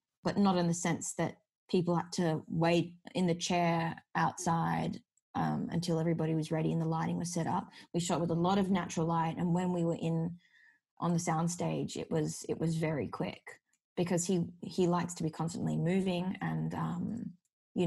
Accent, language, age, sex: Australian, English, 20-39, female